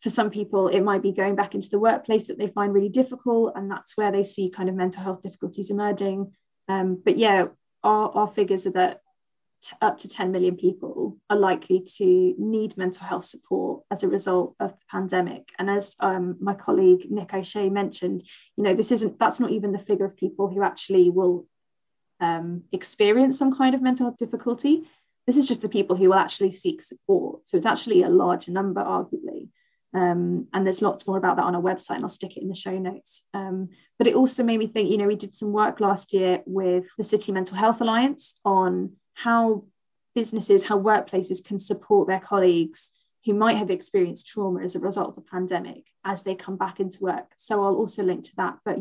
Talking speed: 215 wpm